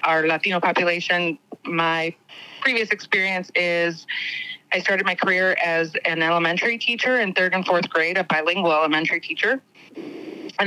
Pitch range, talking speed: 160-195 Hz, 140 wpm